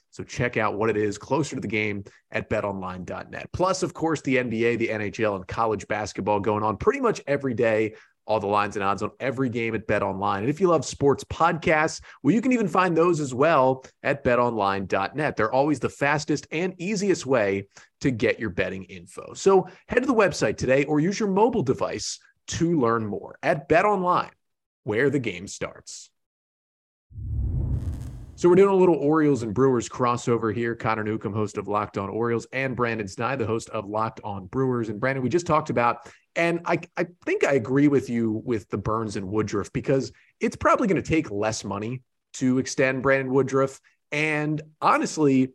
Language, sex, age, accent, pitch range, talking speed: English, male, 30-49, American, 110-150 Hz, 190 wpm